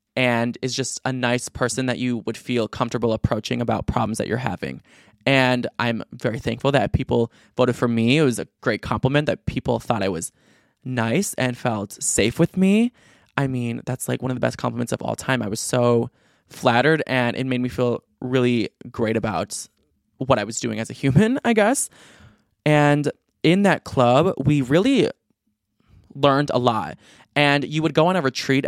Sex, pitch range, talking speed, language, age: male, 120-140 Hz, 190 wpm, English, 20-39